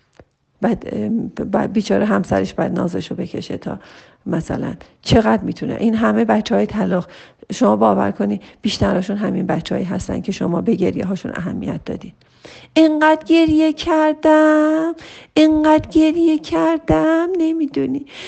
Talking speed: 120 wpm